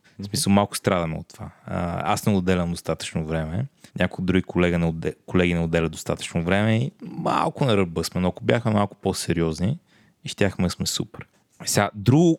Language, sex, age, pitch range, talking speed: Bulgarian, male, 30-49, 85-110 Hz, 160 wpm